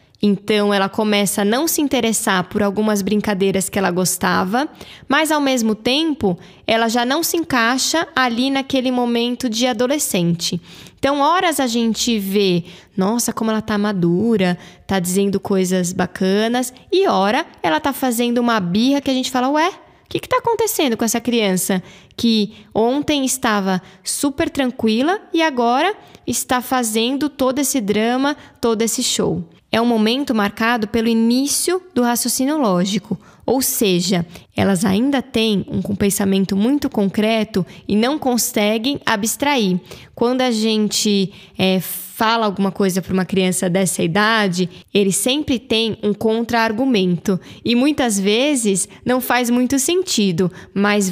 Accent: Brazilian